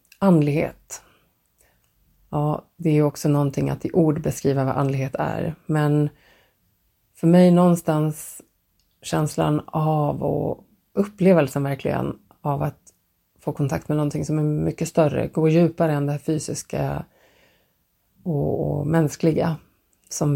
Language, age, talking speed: Swedish, 30-49, 120 wpm